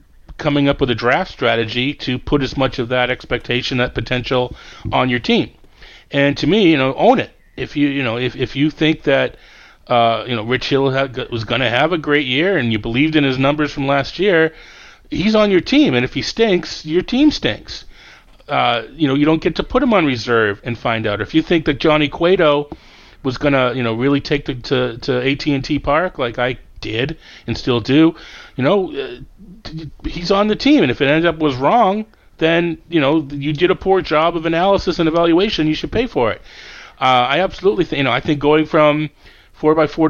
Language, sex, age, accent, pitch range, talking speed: English, male, 40-59, American, 125-160 Hz, 220 wpm